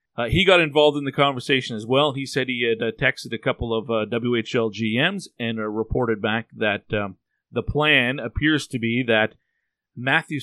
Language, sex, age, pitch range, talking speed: English, male, 40-59, 115-145 Hz, 190 wpm